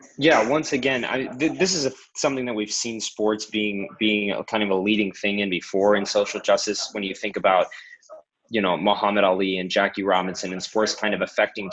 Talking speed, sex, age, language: 215 wpm, male, 20-39, English